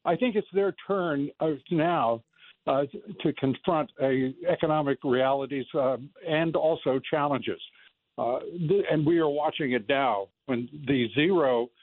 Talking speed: 135 wpm